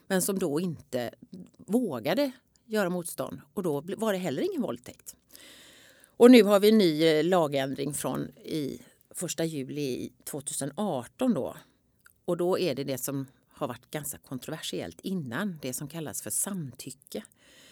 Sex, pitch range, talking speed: female, 145-195 Hz, 145 wpm